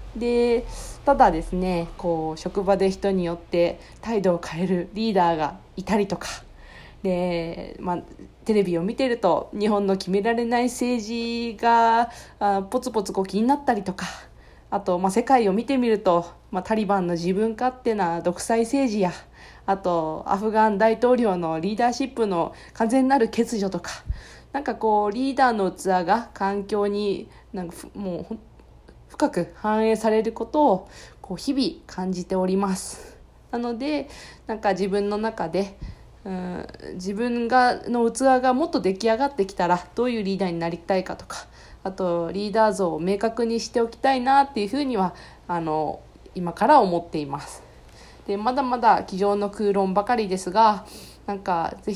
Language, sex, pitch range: Japanese, female, 180-235 Hz